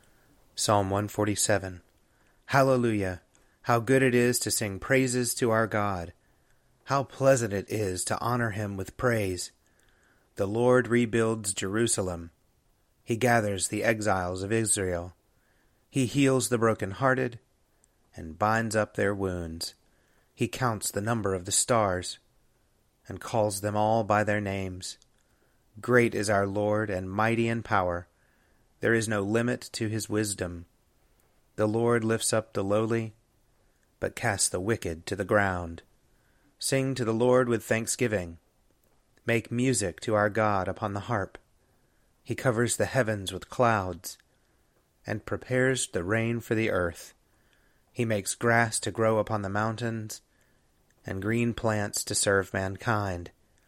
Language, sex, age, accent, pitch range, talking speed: English, male, 30-49, American, 100-120 Hz, 140 wpm